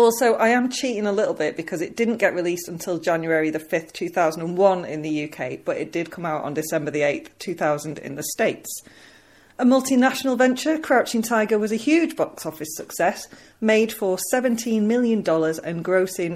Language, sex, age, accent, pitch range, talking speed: English, female, 30-49, British, 160-230 Hz, 185 wpm